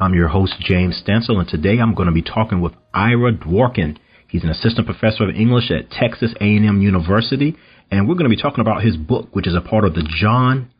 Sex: male